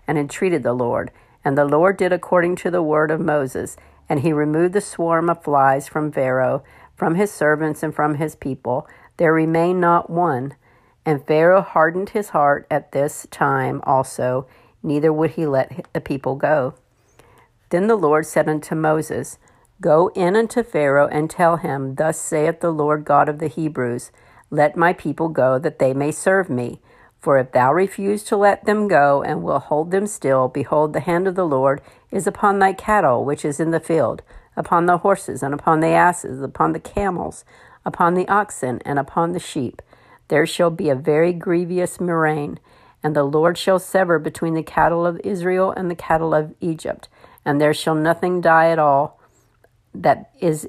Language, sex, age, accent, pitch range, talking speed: English, female, 50-69, American, 145-175 Hz, 185 wpm